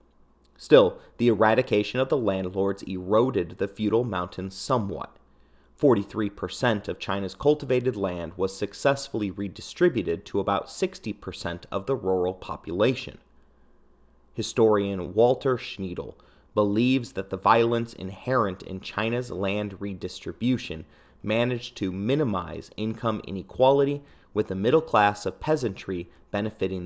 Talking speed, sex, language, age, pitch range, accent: 110 wpm, male, English, 30-49, 90-115 Hz, American